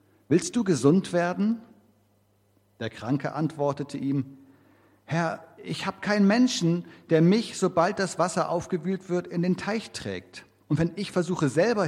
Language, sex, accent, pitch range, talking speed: German, male, German, 105-150 Hz, 145 wpm